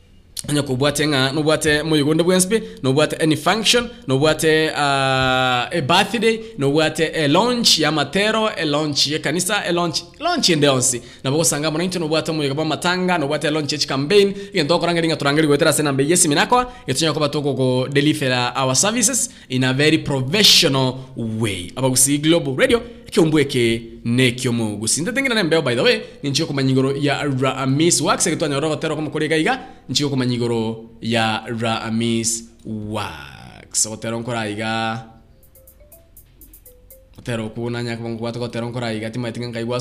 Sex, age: male, 20-39